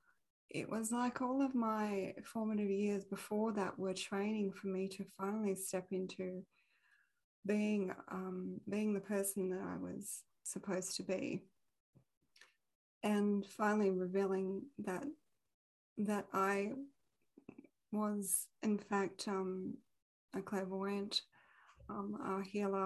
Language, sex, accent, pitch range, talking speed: English, female, Australian, 190-210 Hz, 115 wpm